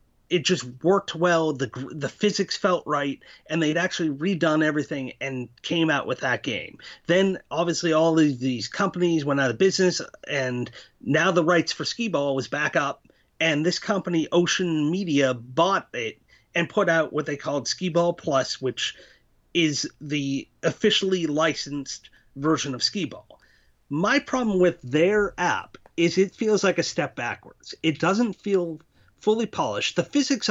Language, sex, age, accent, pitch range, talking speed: English, male, 30-49, American, 145-185 Hz, 165 wpm